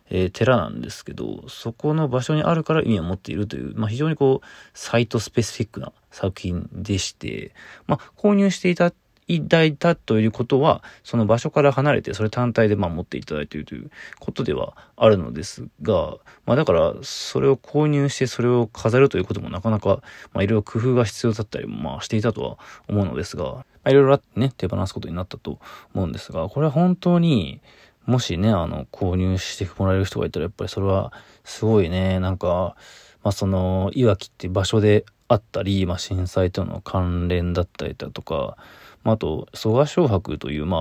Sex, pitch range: male, 95-125 Hz